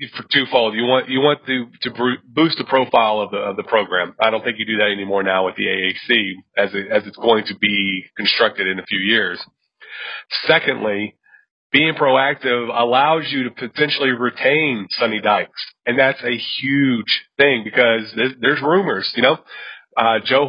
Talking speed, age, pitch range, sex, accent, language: 180 wpm, 40-59, 110-135 Hz, male, American, English